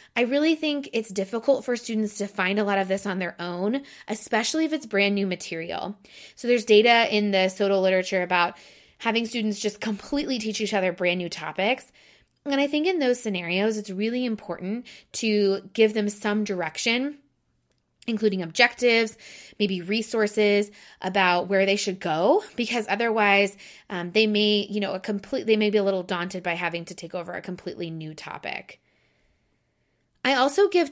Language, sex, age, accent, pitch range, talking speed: English, female, 20-39, American, 190-230 Hz, 175 wpm